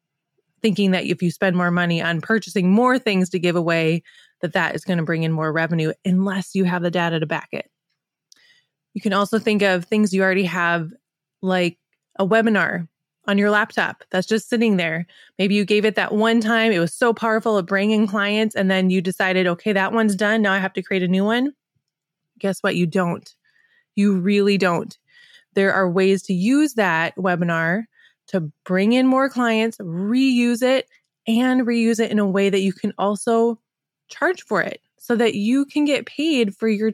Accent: American